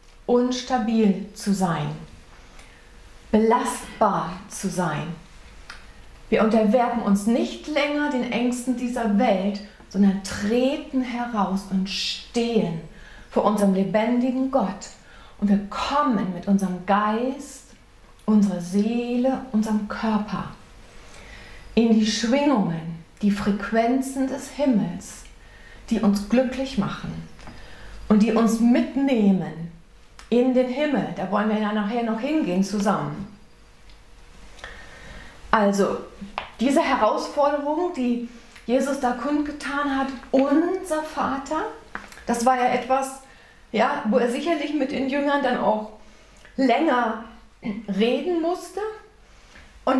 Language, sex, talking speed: German, female, 105 wpm